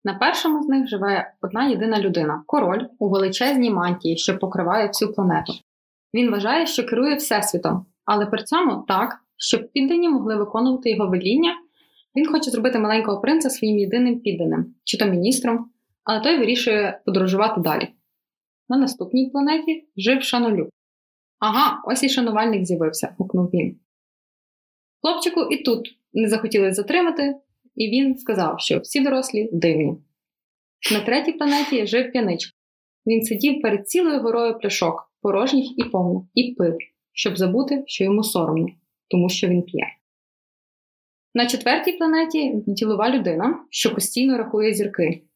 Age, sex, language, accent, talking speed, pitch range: 20-39, female, Ukrainian, native, 145 wpm, 195-265 Hz